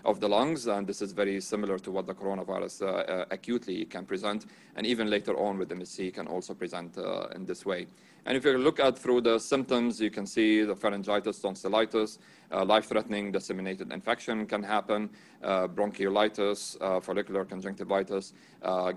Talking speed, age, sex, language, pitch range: 175 wpm, 40-59, male, English, 95-110 Hz